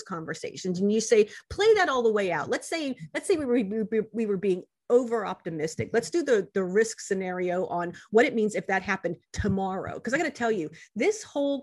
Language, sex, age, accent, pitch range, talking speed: English, female, 40-59, American, 180-240 Hz, 220 wpm